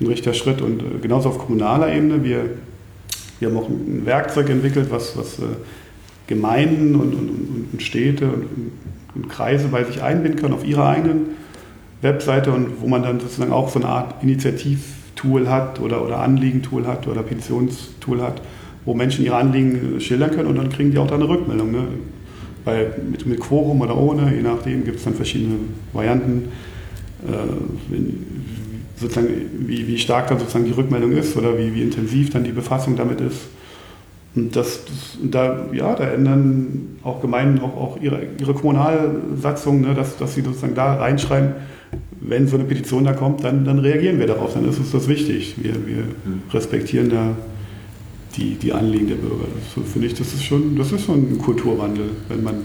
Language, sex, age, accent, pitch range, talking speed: German, male, 40-59, German, 110-140 Hz, 170 wpm